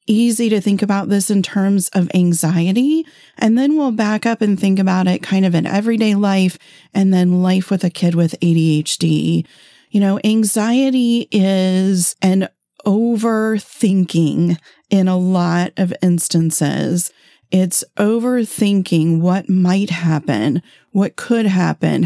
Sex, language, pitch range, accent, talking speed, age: female, English, 175-210 Hz, American, 135 wpm, 40-59